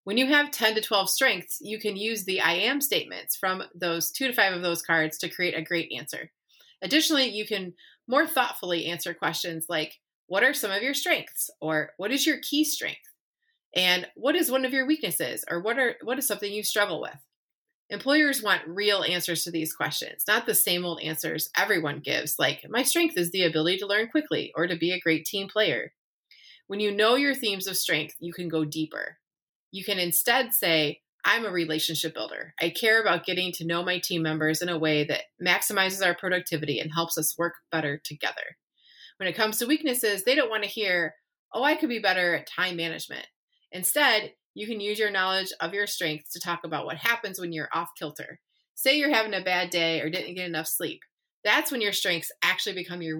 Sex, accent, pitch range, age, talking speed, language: female, American, 165-225 Hz, 30-49, 210 wpm, English